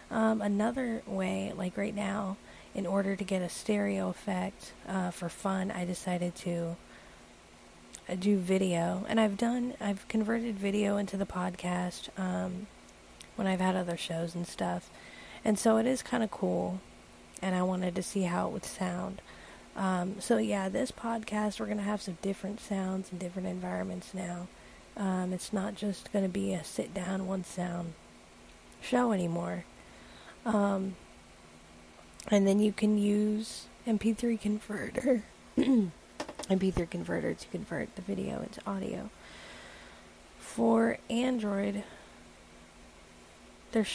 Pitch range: 175-210 Hz